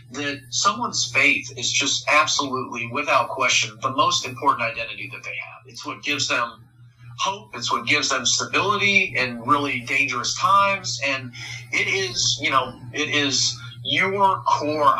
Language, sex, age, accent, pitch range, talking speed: English, male, 40-59, American, 120-140 Hz, 150 wpm